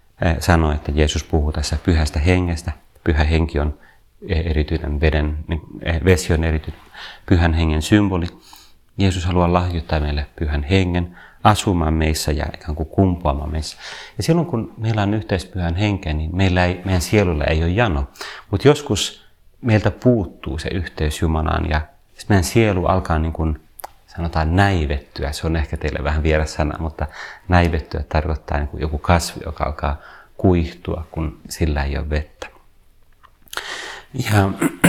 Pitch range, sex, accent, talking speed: 80-90 Hz, male, native, 145 wpm